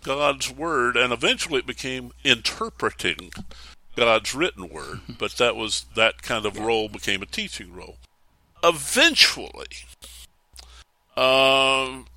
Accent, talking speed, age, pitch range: American, 115 wpm, 50-69, 105-140 Hz